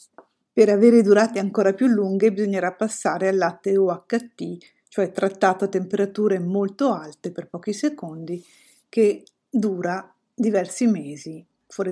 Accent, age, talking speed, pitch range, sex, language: native, 50-69, 125 wpm, 180-215 Hz, female, Italian